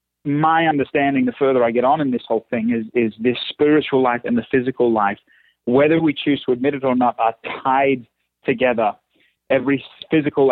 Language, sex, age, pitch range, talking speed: English, male, 40-59, 125-150 Hz, 190 wpm